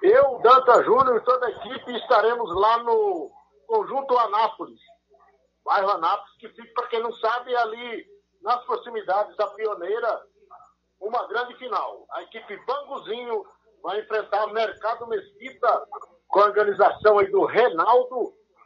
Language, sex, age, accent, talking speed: Portuguese, male, 50-69, Brazilian, 130 wpm